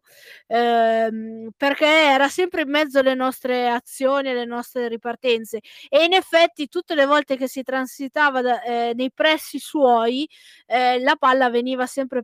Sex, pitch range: female, 245-295 Hz